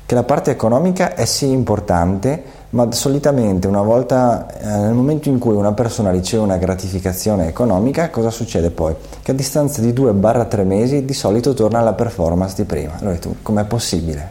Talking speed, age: 165 wpm, 30-49